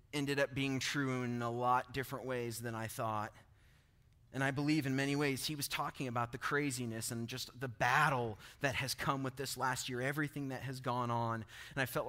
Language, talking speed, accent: English, 215 wpm, American